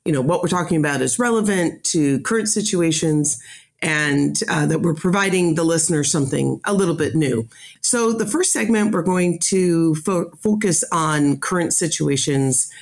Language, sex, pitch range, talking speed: English, female, 145-180 Hz, 160 wpm